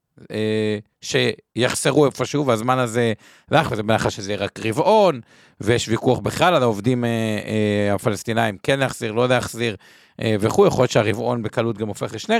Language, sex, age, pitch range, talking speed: Hebrew, male, 50-69, 110-170 Hz, 145 wpm